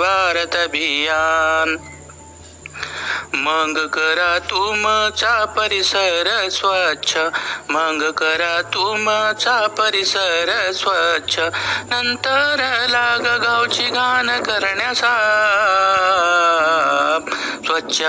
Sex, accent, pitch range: male, native, 160-215 Hz